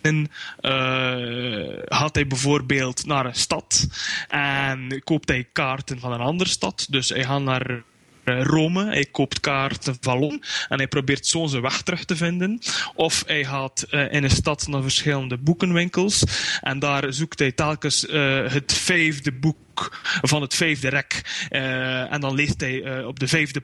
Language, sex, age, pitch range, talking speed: English, male, 20-39, 130-155 Hz, 170 wpm